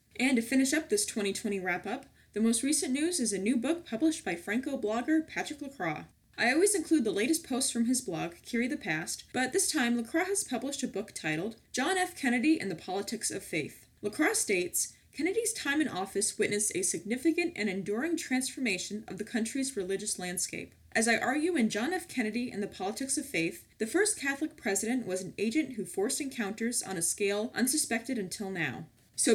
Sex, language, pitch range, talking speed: female, English, 205-300 Hz, 195 wpm